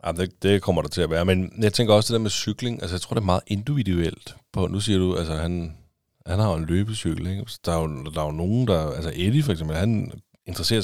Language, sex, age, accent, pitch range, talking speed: Danish, male, 30-49, native, 85-105 Hz, 265 wpm